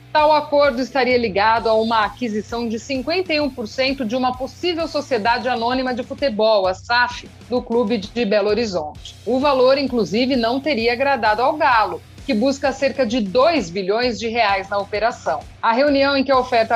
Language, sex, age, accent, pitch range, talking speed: Portuguese, female, 40-59, Brazilian, 225-280 Hz, 165 wpm